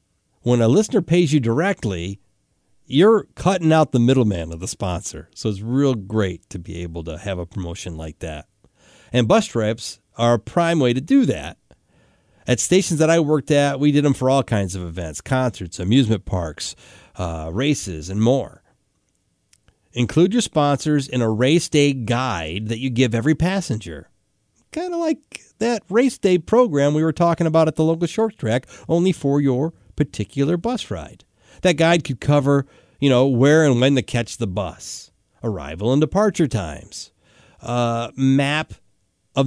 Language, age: English, 40-59